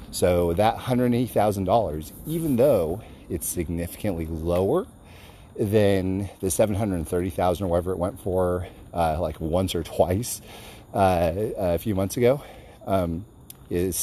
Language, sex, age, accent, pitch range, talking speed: English, male, 40-59, American, 90-115 Hz, 145 wpm